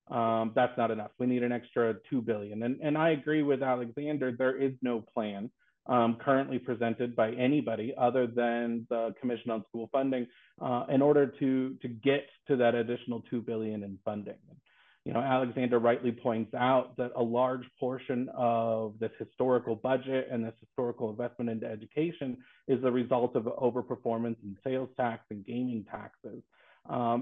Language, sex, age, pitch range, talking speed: English, male, 30-49, 115-130 Hz, 170 wpm